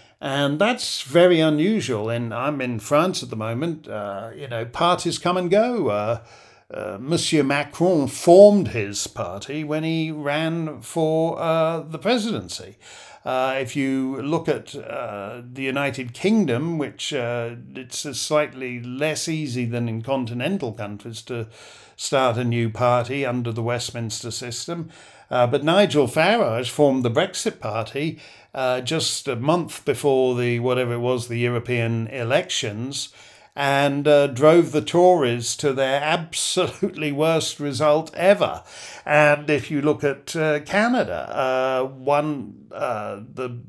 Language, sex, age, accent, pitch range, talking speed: English, male, 60-79, British, 120-160 Hz, 140 wpm